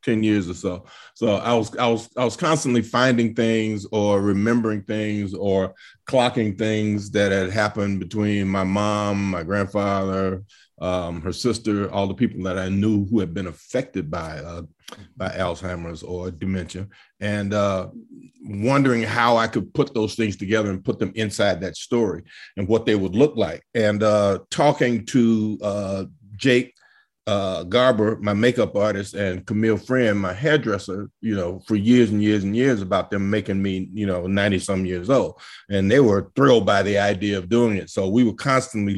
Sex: male